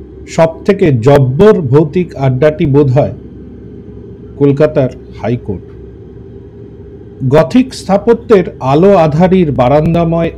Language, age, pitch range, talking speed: Bengali, 50-69, 100-165 Hz, 80 wpm